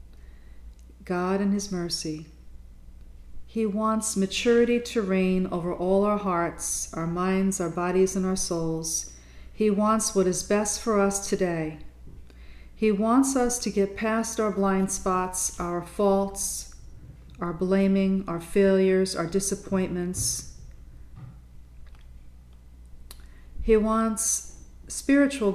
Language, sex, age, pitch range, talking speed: English, female, 40-59, 140-205 Hz, 115 wpm